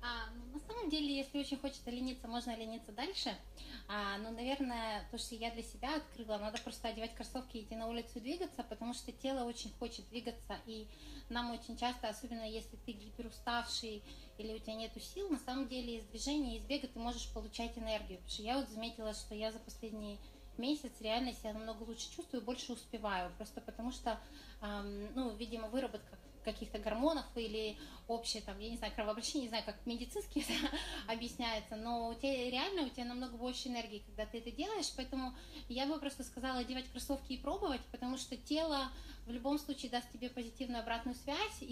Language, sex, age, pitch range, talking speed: Russian, female, 20-39, 225-260 Hz, 185 wpm